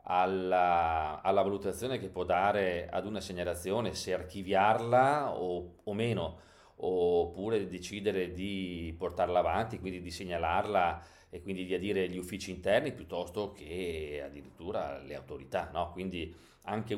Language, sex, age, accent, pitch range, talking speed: Italian, male, 40-59, native, 90-105 Hz, 125 wpm